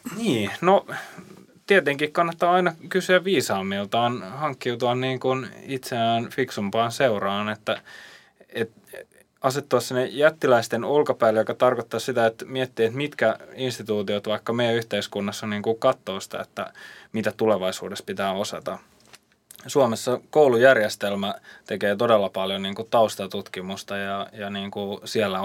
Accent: native